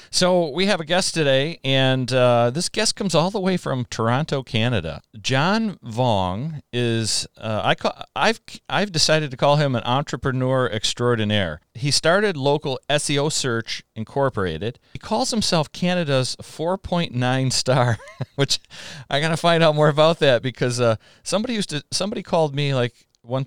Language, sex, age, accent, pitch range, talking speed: English, male, 40-59, American, 105-140 Hz, 150 wpm